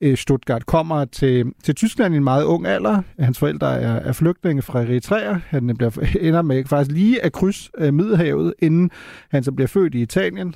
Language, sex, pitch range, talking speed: Danish, male, 130-175 Hz, 195 wpm